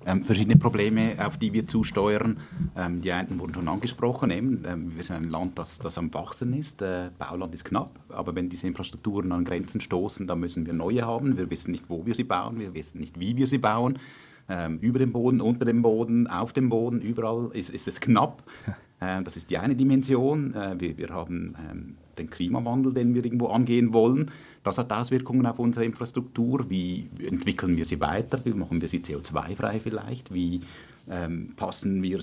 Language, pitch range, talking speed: German, 90-120 Hz, 200 wpm